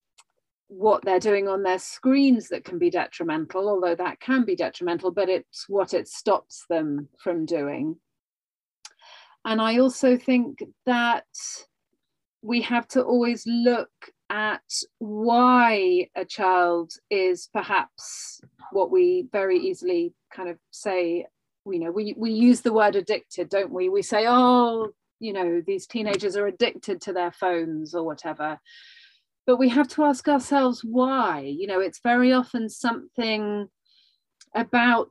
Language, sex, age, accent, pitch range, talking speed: English, female, 30-49, British, 180-250 Hz, 145 wpm